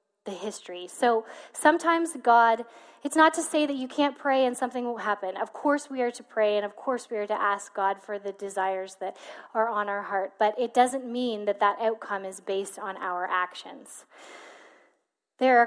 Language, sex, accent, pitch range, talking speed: English, female, American, 215-265 Hz, 205 wpm